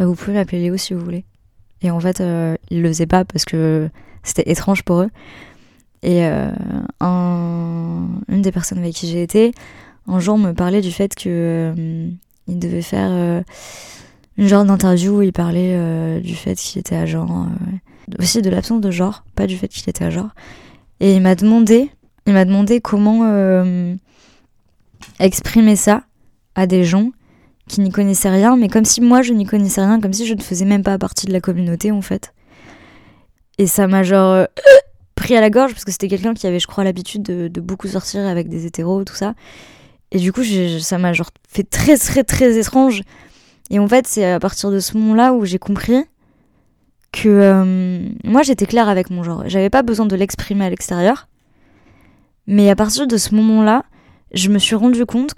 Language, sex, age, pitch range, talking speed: French, female, 20-39, 175-210 Hz, 205 wpm